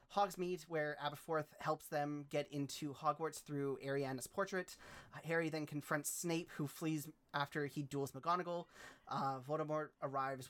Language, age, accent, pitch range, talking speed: English, 30-49, American, 140-160 Hz, 145 wpm